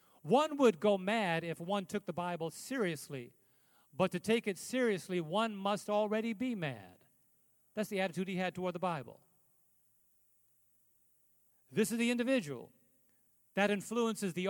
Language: English